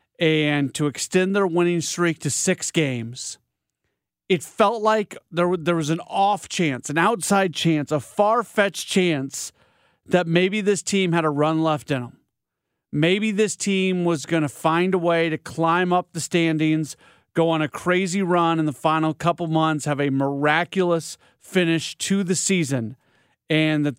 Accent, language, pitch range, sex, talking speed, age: American, English, 145-180 Hz, male, 170 wpm, 40-59